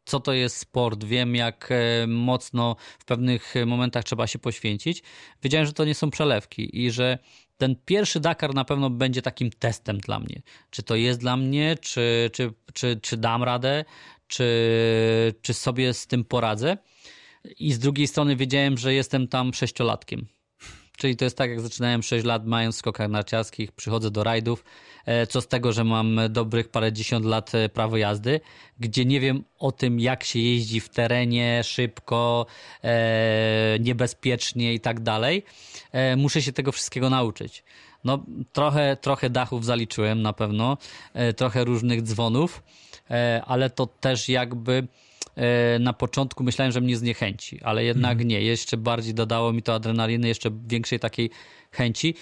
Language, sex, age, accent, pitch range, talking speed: Polish, male, 20-39, native, 115-130 Hz, 150 wpm